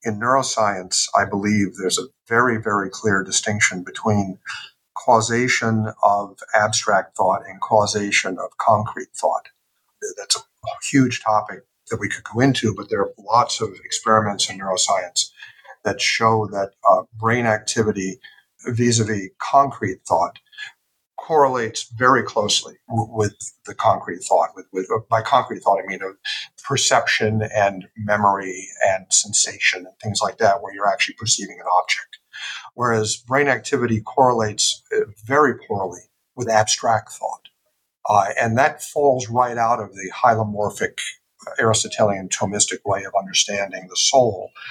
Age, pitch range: 50-69, 100-120 Hz